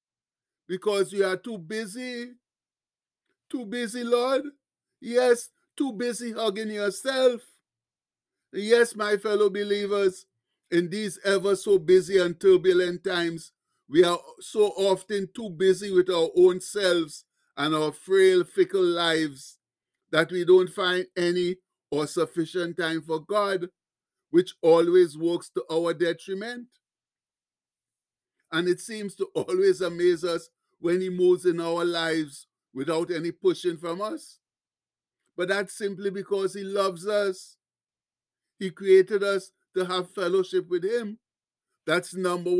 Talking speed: 130 wpm